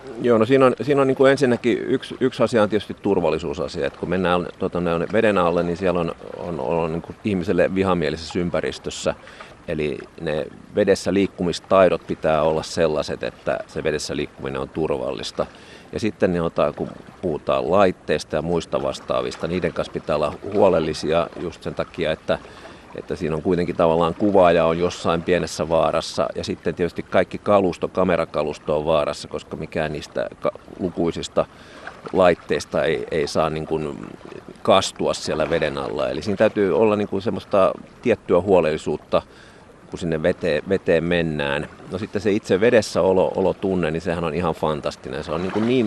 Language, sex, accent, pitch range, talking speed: Finnish, male, native, 80-100 Hz, 150 wpm